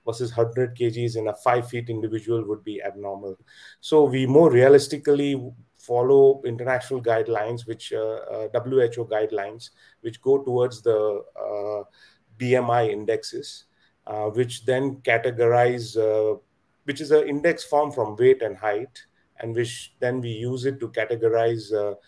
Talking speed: 145 wpm